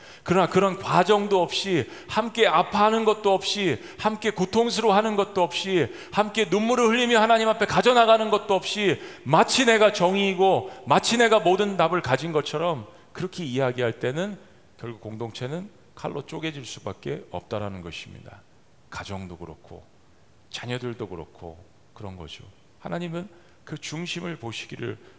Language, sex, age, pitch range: Korean, male, 40-59, 110-180 Hz